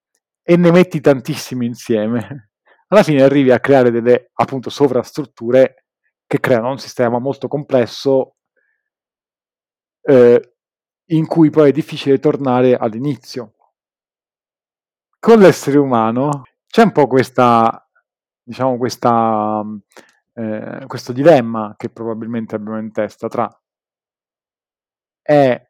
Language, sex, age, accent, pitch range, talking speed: Italian, male, 40-59, native, 115-140 Hz, 105 wpm